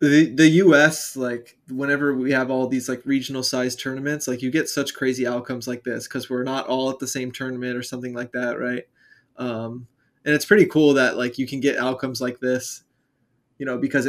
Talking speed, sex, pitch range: 210 wpm, male, 125-135 Hz